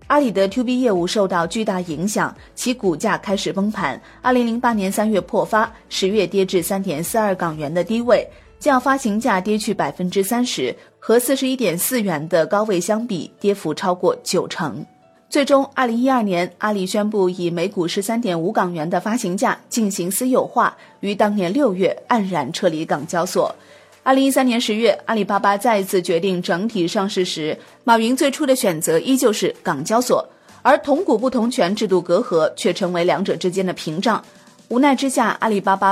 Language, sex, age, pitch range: Chinese, female, 30-49, 180-240 Hz